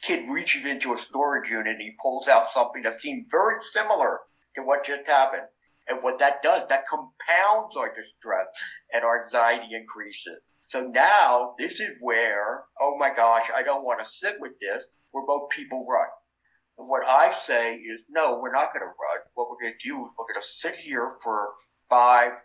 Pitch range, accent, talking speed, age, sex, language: 115-140 Hz, American, 200 wpm, 60-79, male, English